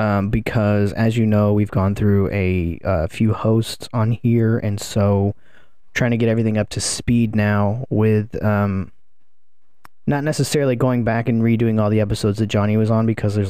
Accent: American